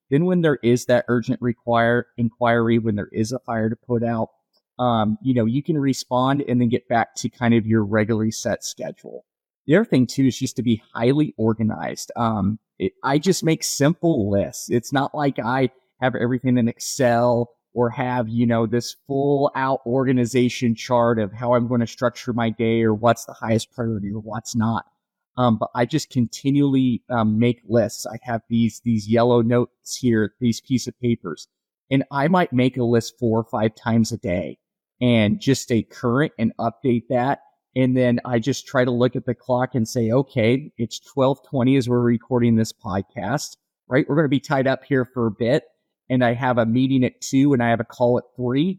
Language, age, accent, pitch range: Chinese, 30-49, American, 115-130 Hz